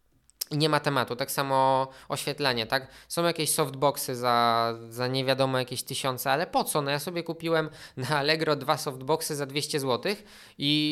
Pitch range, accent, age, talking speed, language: 130-155 Hz, native, 20-39, 165 wpm, Polish